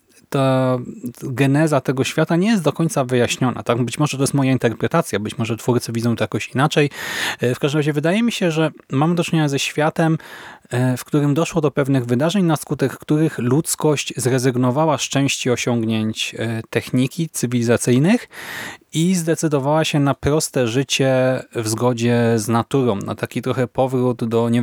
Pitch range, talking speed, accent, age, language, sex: 115-150 Hz, 165 wpm, native, 30-49, Polish, male